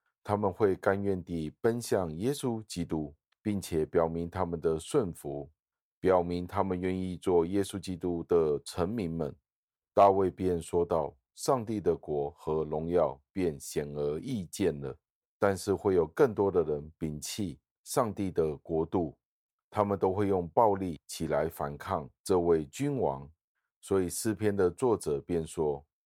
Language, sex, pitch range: Chinese, male, 80-100 Hz